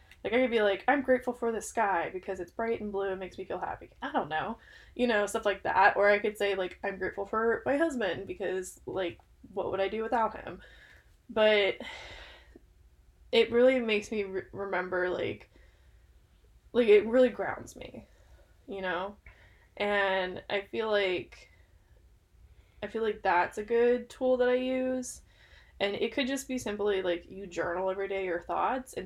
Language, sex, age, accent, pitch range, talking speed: English, female, 20-39, American, 185-230 Hz, 180 wpm